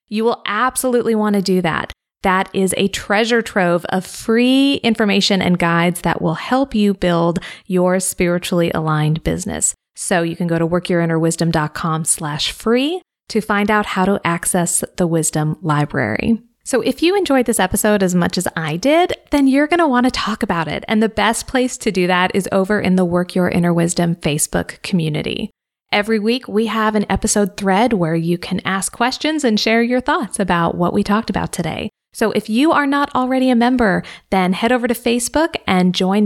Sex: female